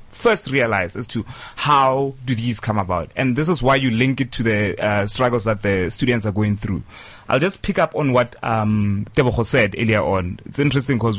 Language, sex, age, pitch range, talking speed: English, male, 30-49, 110-145 Hz, 215 wpm